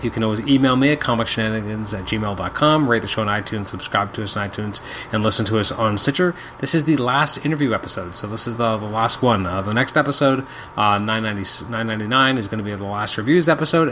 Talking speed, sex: 235 wpm, male